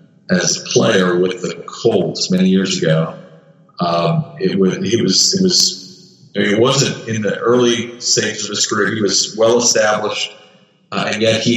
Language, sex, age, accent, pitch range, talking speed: English, male, 40-59, American, 100-150 Hz, 180 wpm